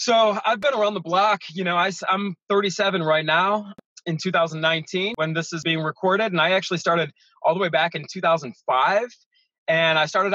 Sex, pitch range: male, 155-190 Hz